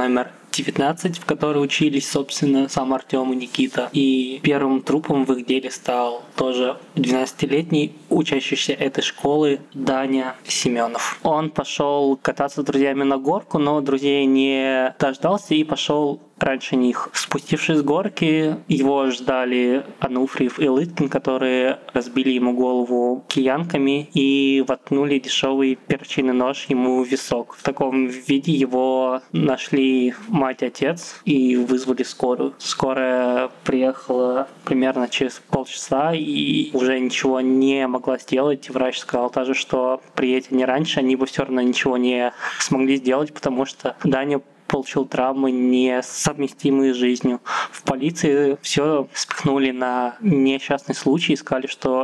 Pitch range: 130-145 Hz